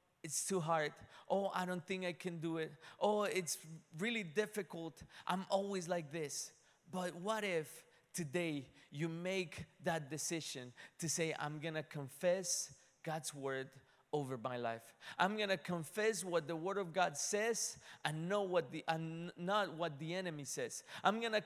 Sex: male